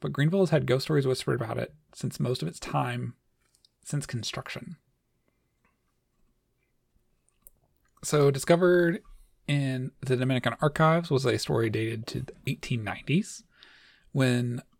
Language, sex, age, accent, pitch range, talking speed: English, male, 30-49, American, 120-150 Hz, 120 wpm